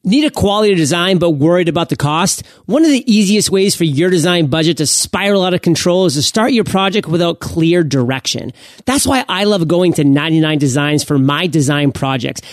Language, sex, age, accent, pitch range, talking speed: English, male, 30-49, American, 155-200 Hz, 205 wpm